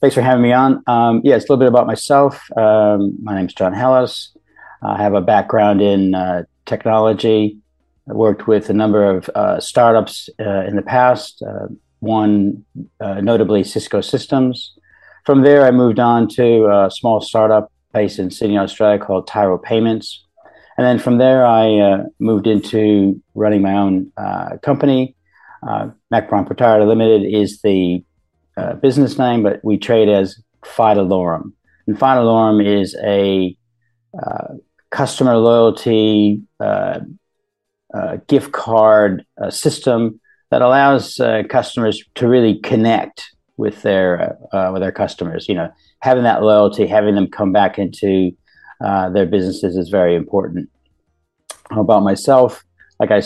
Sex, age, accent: male, 50-69, American